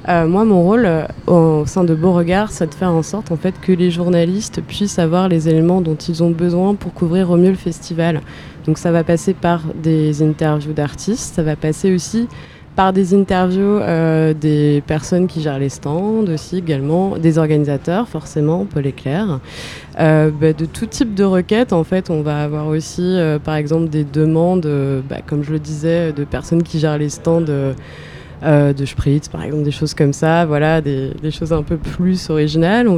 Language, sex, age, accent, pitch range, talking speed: French, female, 20-39, French, 155-185 Hz, 205 wpm